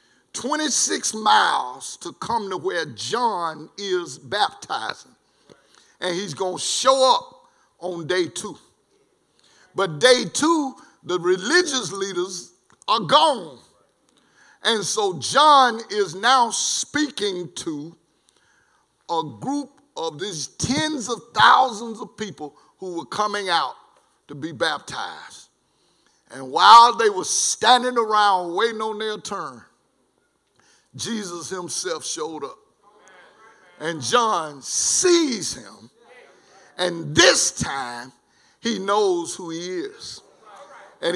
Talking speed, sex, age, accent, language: 110 wpm, male, 50-69, American, English